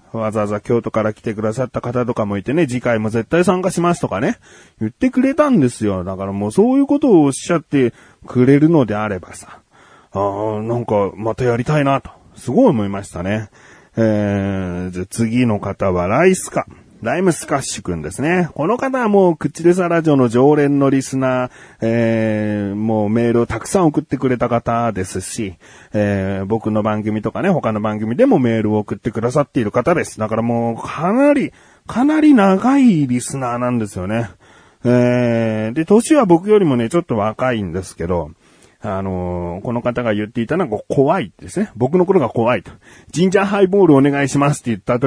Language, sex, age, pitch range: Japanese, male, 30-49, 105-165 Hz